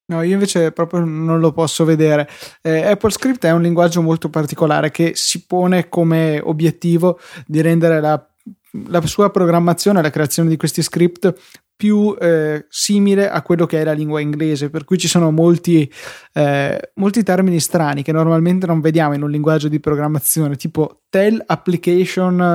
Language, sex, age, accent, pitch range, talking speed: Italian, male, 20-39, native, 155-180 Hz, 170 wpm